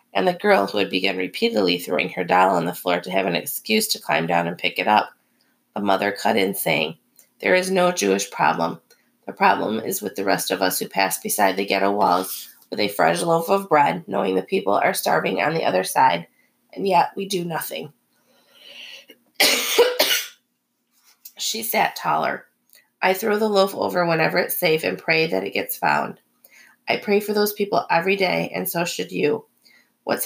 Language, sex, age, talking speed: English, female, 30-49, 190 wpm